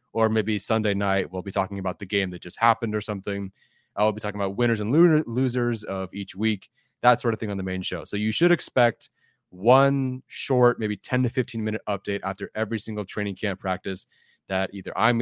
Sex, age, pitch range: male, 20-39, 95-115 Hz